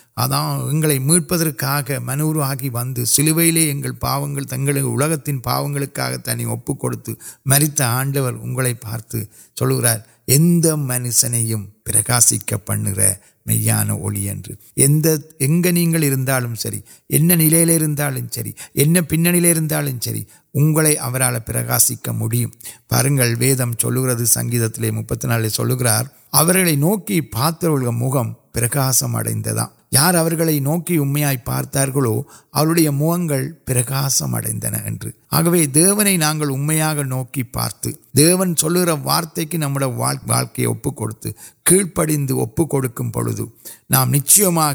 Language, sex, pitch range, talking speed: Urdu, male, 120-155 Hz, 60 wpm